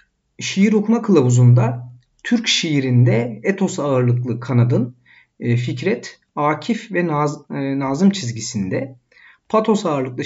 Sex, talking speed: male, 105 wpm